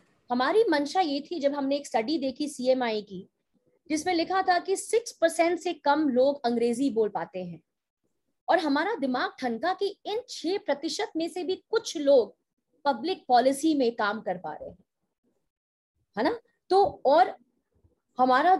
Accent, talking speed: native, 160 wpm